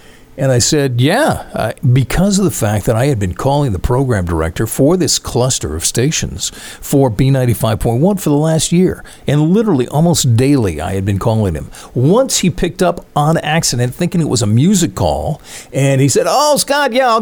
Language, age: English, 50-69